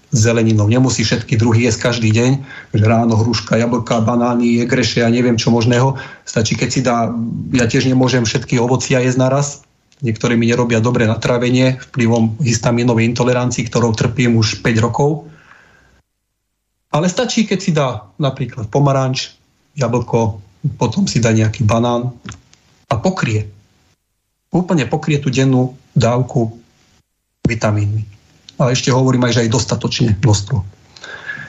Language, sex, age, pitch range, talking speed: Slovak, male, 30-49, 110-130 Hz, 135 wpm